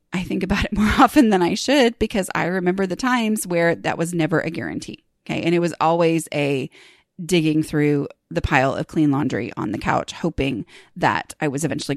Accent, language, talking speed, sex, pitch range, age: American, English, 205 wpm, female, 170-245 Hz, 30-49